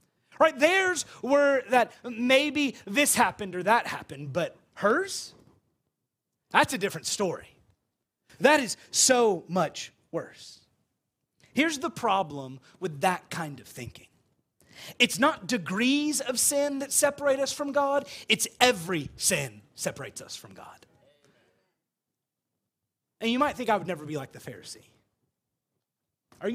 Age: 30-49